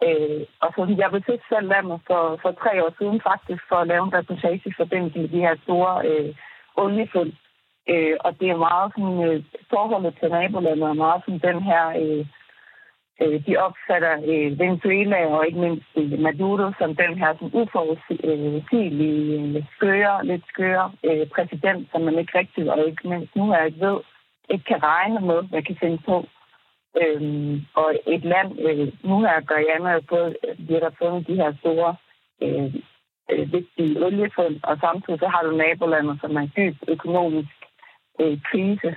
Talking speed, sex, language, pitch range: 180 wpm, female, Danish, 155-185 Hz